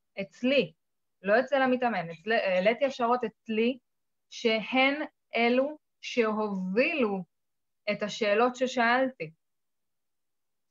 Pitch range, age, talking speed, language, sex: 205-255 Hz, 20-39, 90 wpm, Hebrew, female